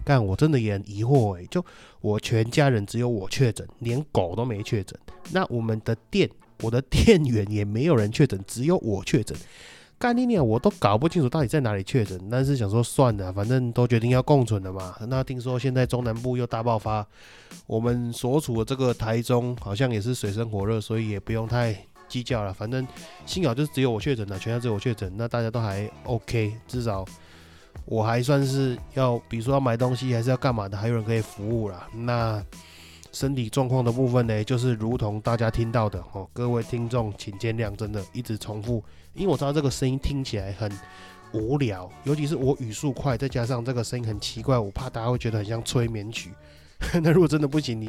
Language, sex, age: Chinese, male, 20-39